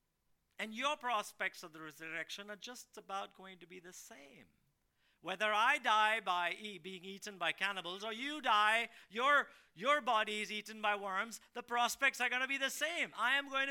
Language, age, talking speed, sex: English, 50-69, 190 wpm, male